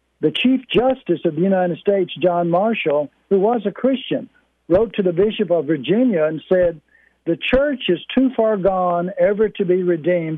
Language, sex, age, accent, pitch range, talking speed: English, male, 60-79, American, 170-215 Hz, 180 wpm